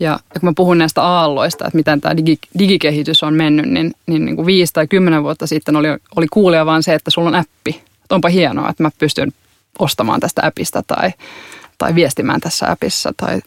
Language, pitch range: Finnish, 150-175 Hz